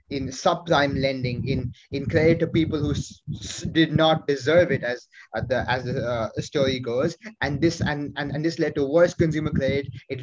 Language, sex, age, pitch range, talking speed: English, male, 20-39, 130-160 Hz, 205 wpm